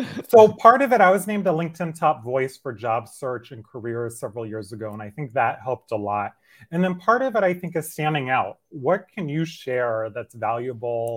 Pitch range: 110-155 Hz